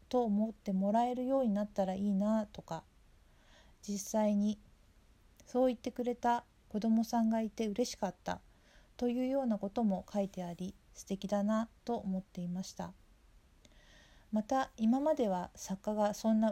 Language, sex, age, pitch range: Japanese, female, 50-69, 195-235 Hz